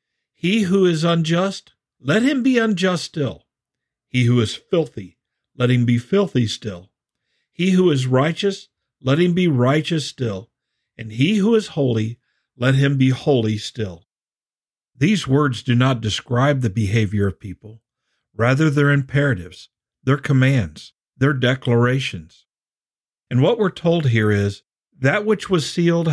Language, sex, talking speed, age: English, male, 145 wpm, 50-69